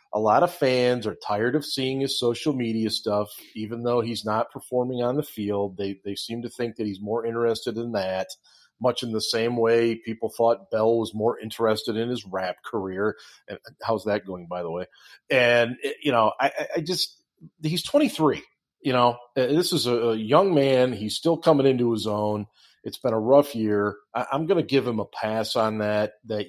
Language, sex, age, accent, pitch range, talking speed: English, male, 40-59, American, 105-130 Hz, 205 wpm